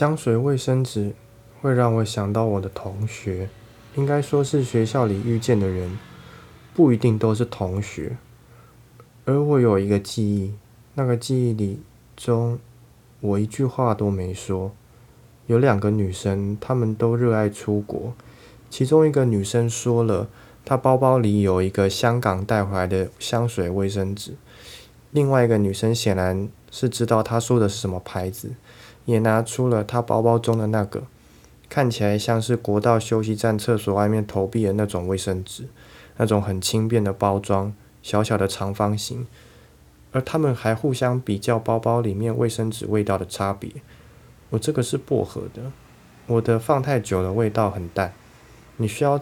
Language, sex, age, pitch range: Chinese, male, 20-39, 100-120 Hz